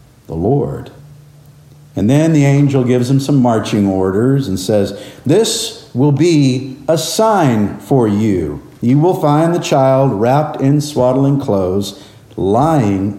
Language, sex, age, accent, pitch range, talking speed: English, male, 50-69, American, 115-145 Hz, 135 wpm